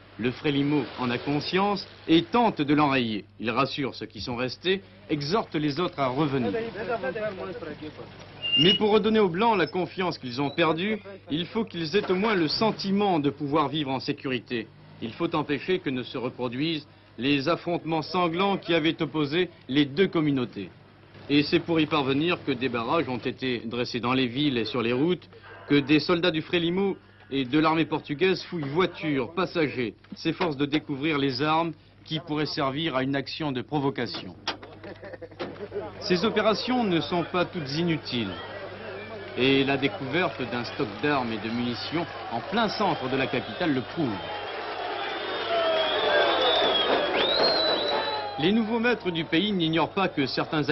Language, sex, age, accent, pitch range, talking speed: French, male, 50-69, French, 130-175 Hz, 160 wpm